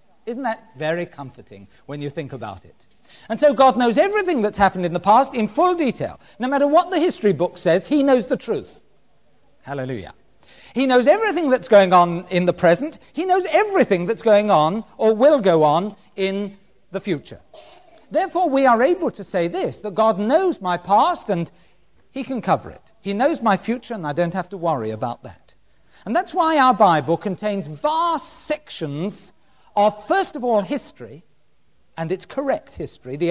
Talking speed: 185 wpm